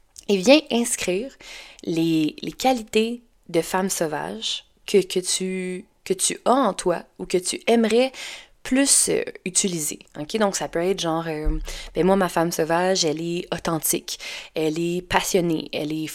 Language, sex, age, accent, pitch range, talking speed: French, female, 20-39, Canadian, 165-210 Hz, 160 wpm